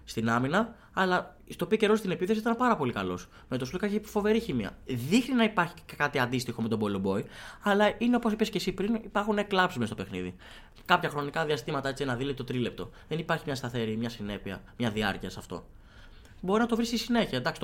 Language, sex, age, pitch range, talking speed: Greek, male, 20-39, 110-170 Hz, 215 wpm